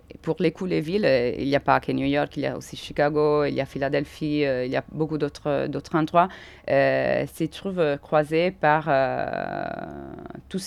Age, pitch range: 30-49, 145-160 Hz